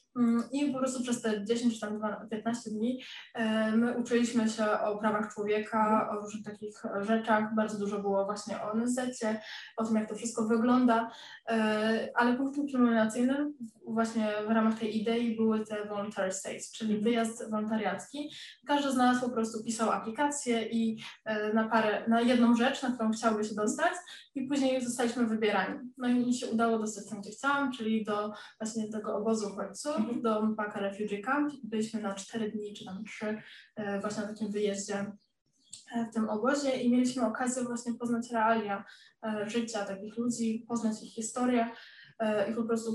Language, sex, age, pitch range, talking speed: Polish, female, 10-29, 210-235 Hz, 165 wpm